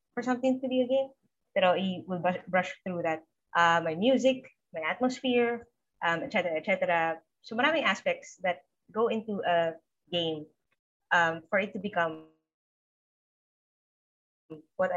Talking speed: 145 wpm